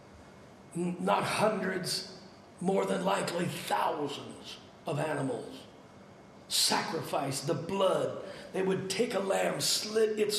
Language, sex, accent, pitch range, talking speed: English, male, American, 190-270 Hz, 105 wpm